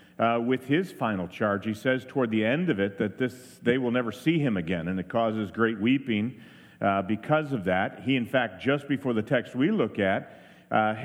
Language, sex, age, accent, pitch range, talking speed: English, male, 50-69, American, 110-140 Hz, 215 wpm